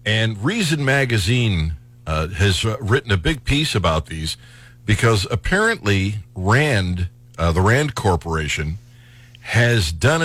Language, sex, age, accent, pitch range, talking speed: English, male, 50-69, American, 105-125 Hz, 115 wpm